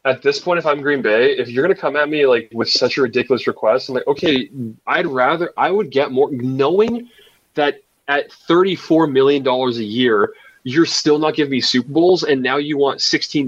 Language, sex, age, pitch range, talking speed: English, male, 20-39, 135-200 Hz, 215 wpm